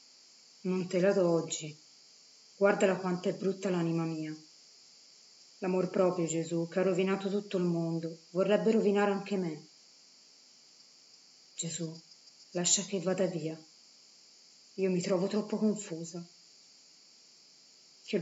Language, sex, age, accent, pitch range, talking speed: Italian, female, 30-49, native, 175-210 Hz, 115 wpm